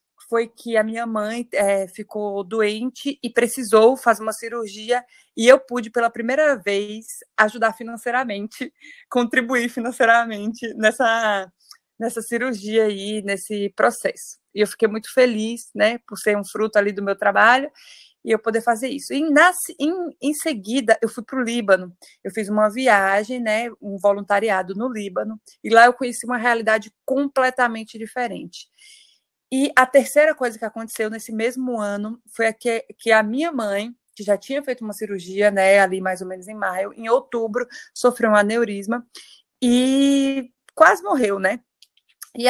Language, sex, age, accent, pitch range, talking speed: Portuguese, female, 20-39, Brazilian, 210-250 Hz, 160 wpm